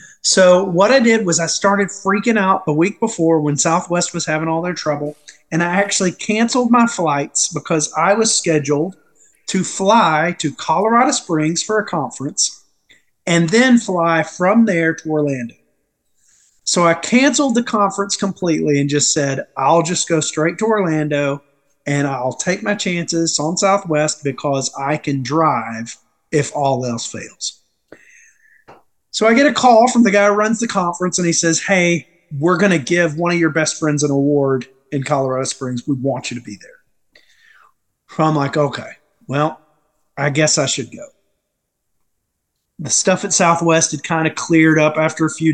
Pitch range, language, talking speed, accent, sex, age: 145-190 Hz, English, 175 wpm, American, male, 40-59